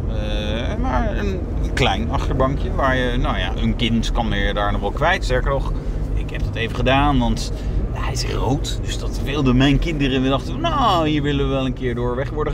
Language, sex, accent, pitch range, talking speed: Dutch, male, Dutch, 105-165 Hz, 215 wpm